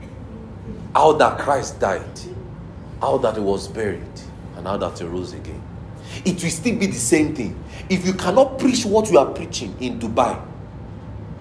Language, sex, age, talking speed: English, male, 40-59, 170 wpm